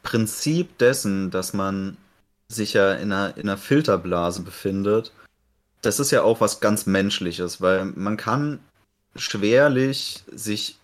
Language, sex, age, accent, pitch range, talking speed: German, male, 30-49, German, 95-110 Hz, 125 wpm